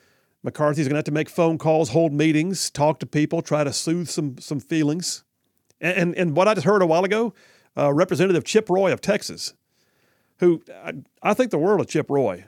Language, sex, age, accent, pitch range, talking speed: English, male, 50-69, American, 140-185 Hz, 210 wpm